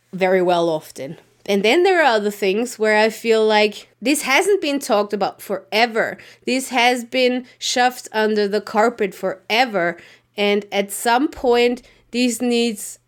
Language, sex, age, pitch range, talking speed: English, female, 20-39, 210-260 Hz, 150 wpm